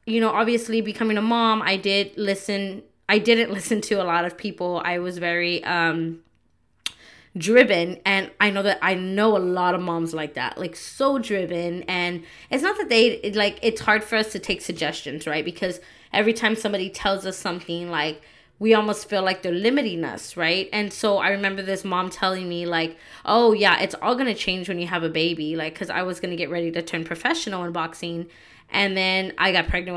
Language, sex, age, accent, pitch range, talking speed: English, female, 20-39, American, 170-205 Hz, 210 wpm